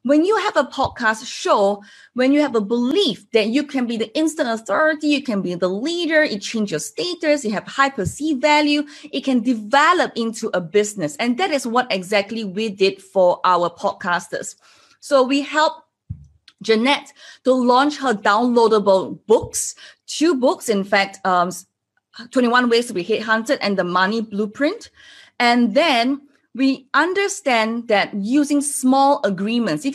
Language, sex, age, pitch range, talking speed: English, female, 20-39, 205-285 Hz, 160 wpm